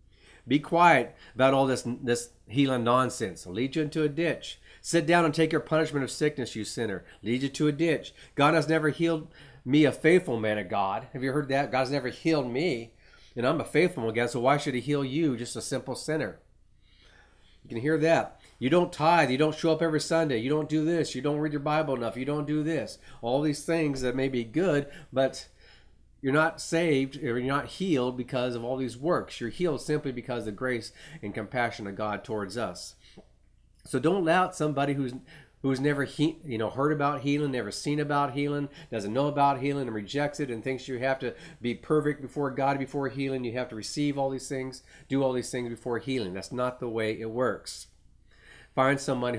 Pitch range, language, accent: 125-150 Hz, English, American